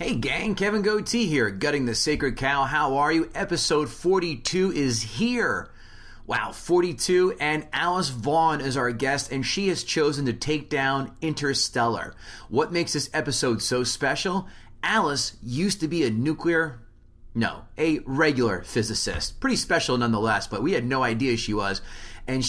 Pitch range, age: 120-165 Hz, 30-49